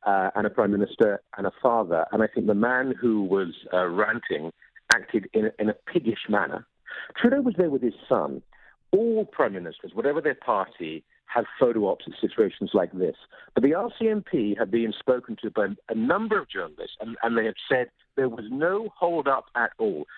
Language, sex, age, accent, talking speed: English, male, 50-69, British, 200 wpm